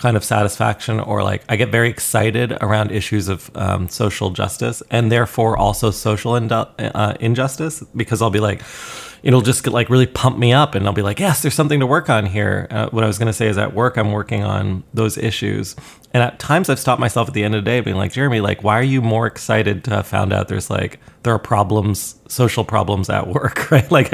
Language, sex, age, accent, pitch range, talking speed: English, male, 20-39, American, 105-125 Hz, 235 wpm